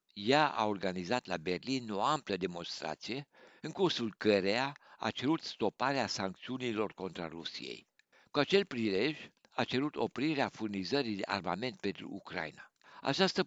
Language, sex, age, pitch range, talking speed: Romanian, male, 60-79, 95-130 Hz, 130 wpm